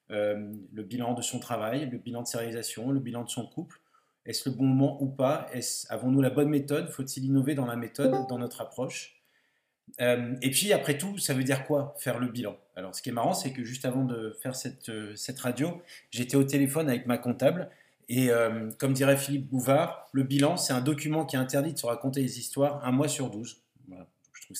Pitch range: 125-145 Hz